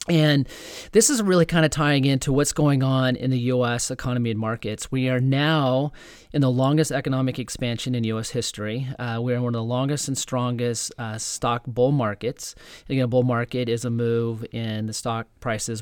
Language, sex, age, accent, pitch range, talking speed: English, male, 30-49, American, 115-140 Hz, 200 wpm